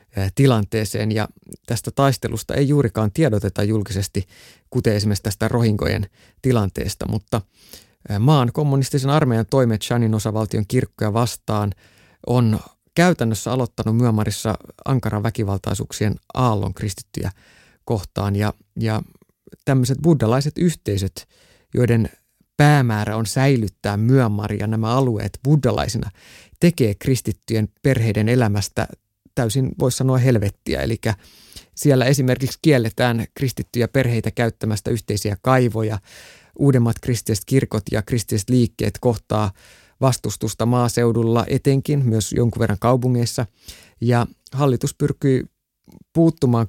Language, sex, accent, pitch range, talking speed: Finnish, male, native, 105-130 Hz, 100 wpm